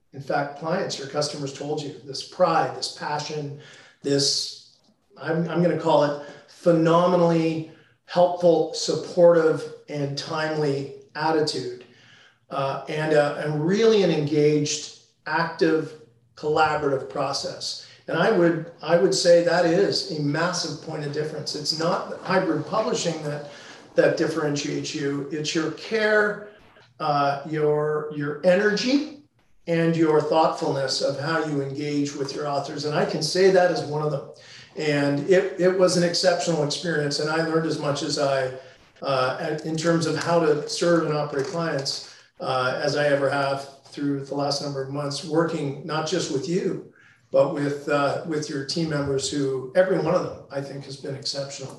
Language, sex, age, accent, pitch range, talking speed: English, male, 40-59, American, 140-170 Hz, 160 wpm